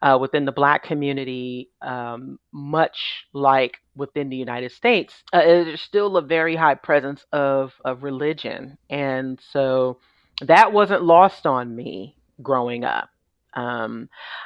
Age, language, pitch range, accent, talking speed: 40-59, English, 135-170 Hz, American, 135 wpm